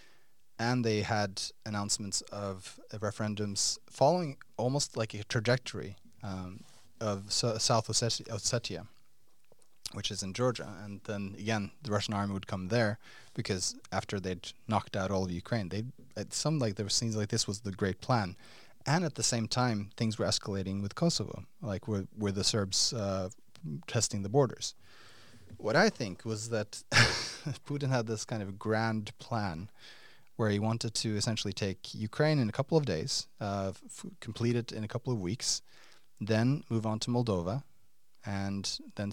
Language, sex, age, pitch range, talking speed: English, male, 30-49, 100-120 Hz, 165 wpm